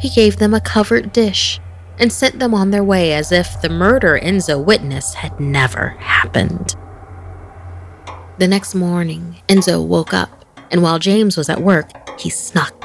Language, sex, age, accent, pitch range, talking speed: English, female, 30-49, American, 150-195 Hz, 165 wpm